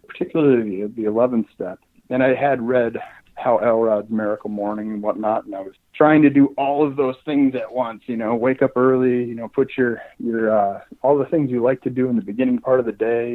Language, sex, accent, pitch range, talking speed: English, male, American, 110-140 Hz, 235 wpm